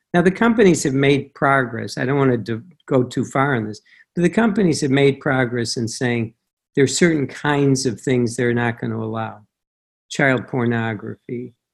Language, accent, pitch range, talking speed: English, American, 115-140 Hz, 190 wpm